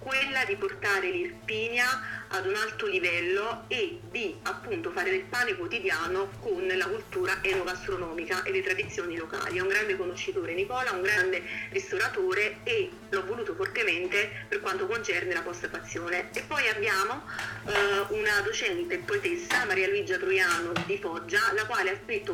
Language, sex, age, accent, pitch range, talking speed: Italian, female, 40-59, native, 360-405 Hz, 155 wpm